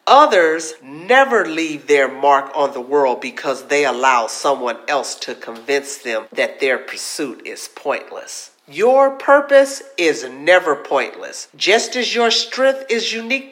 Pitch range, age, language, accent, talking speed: 180-295 Hz, 50-69, English, American, 140 wpm